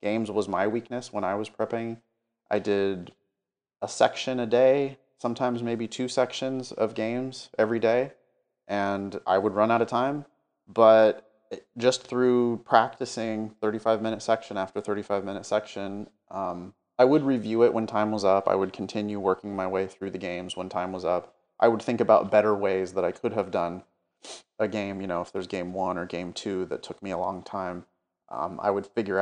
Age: 30-49